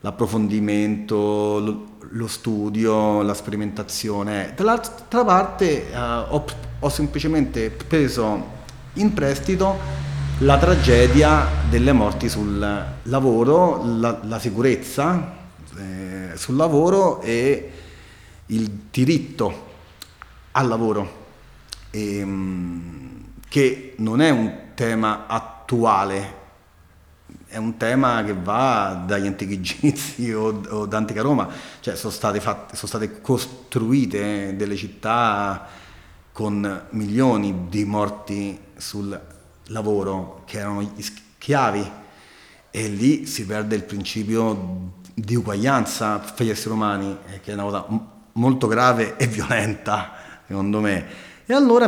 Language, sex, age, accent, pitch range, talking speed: Italian, male, 40-59, native, 100-120 Hz, 105 wpm